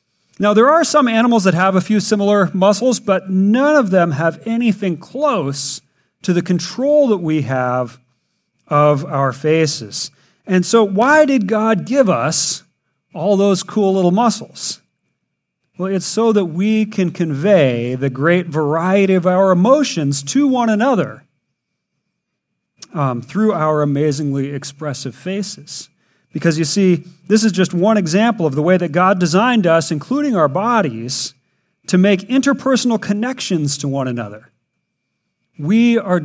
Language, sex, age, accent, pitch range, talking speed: English, male, 40-59, American, 150-215 Hz, 145 wpm